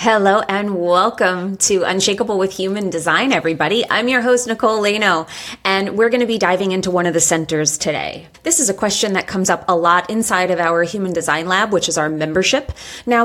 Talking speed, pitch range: 210 wpm, 180-225 Hz